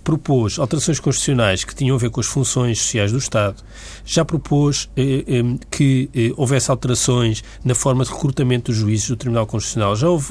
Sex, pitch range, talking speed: male, 110-165 Hz, 185 wpm